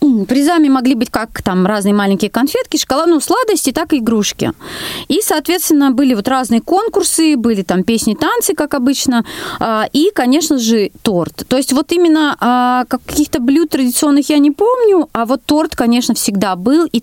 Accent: native